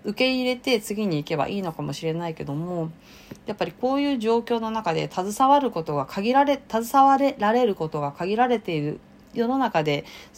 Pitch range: 140-190 Hz